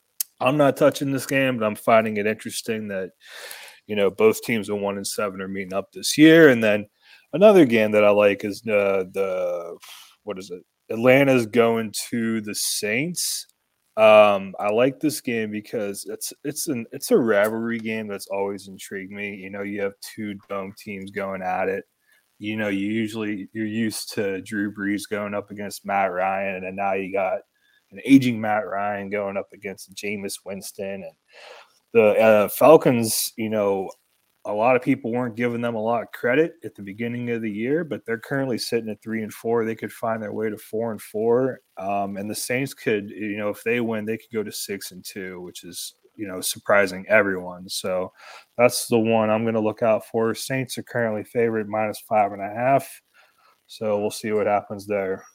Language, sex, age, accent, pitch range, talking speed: English, male, 20-39, American, 100-115 Hz, 200 wpm